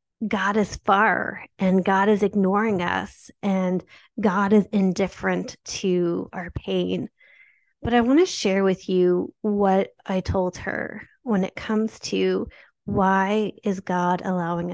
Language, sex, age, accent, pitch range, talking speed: English, female, 30-49, American, 185-220 Hz, 140 wpm